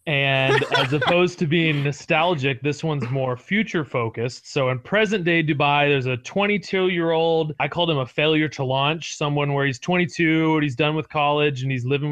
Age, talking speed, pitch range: 30-49, 200 wpm, 140-160 Hz